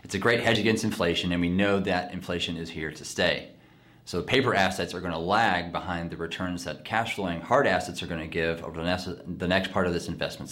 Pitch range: 85-100 Hz